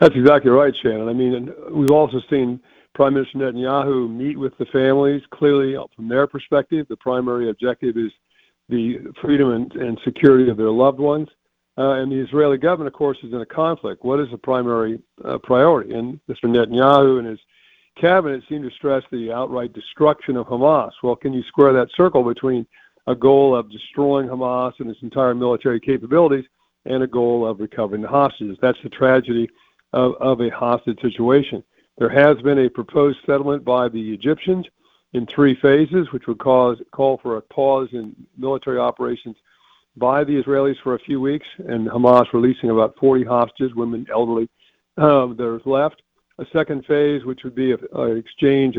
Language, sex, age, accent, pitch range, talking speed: English, male, 50-69, American, 120-140 Hz, 180 wpm